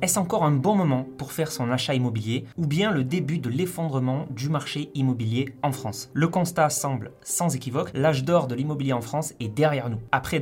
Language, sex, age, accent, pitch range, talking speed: French, male, 20-39, French, 125-155 Hz, 205 wpm